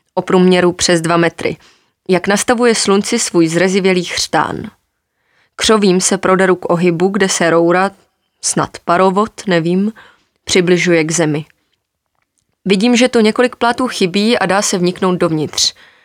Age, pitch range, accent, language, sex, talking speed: 20-39, 175-200 Hz, native, Czech, female, 135 wpm